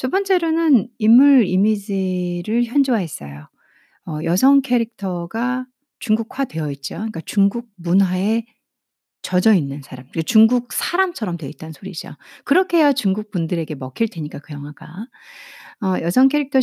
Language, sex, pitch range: Korean, female, 175-255 Hz